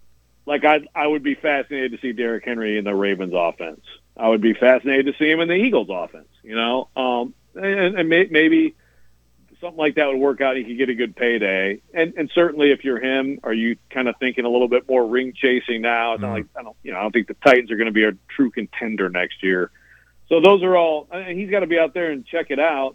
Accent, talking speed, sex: American, 260 wpm, male